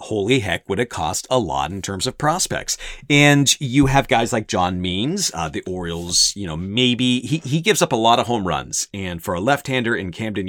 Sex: male